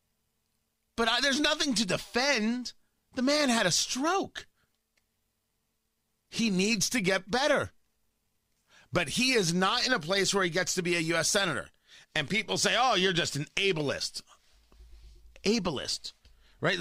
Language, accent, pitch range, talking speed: English, American, 120-190 Hz, 145 wpm